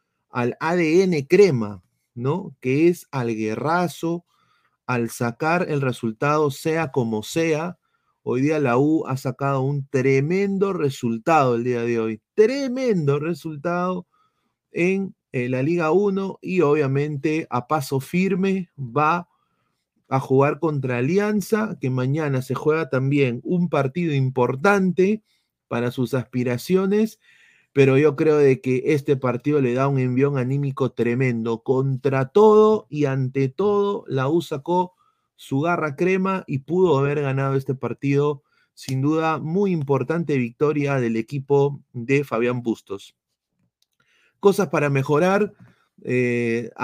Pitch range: 130-175 Hz